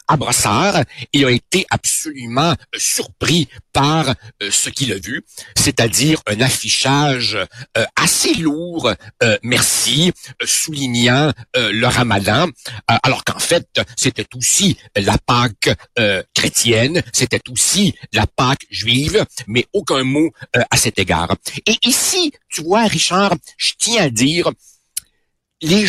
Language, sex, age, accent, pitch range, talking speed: French, male, 60-79, French, 120-165 Hz, 110 wpm